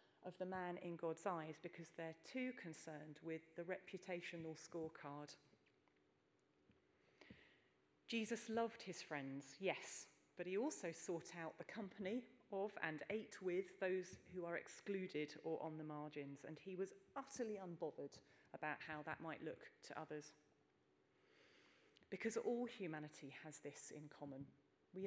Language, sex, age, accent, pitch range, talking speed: English, female, 40-59, British, 155-200 Hz, 140 wpm